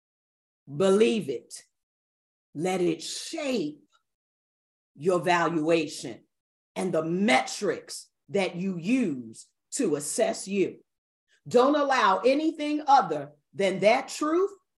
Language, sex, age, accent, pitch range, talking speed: English, female, 40-59, American, 190-295 Hz, 95 wpm